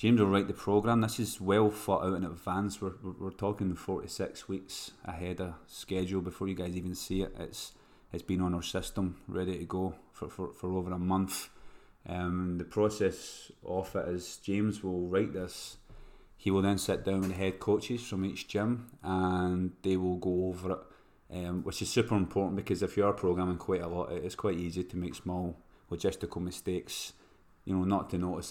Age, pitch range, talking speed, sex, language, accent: 30-49, 90-95 Hz, 200 wpm, male, English, British